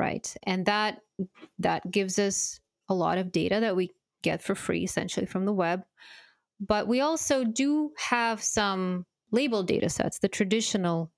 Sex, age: female, 30-49